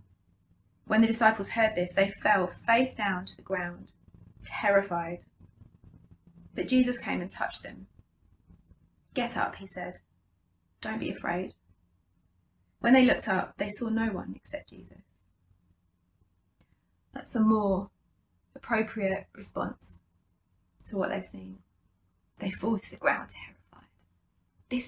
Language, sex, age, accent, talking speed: English, female, 20-39, British, 125 wpm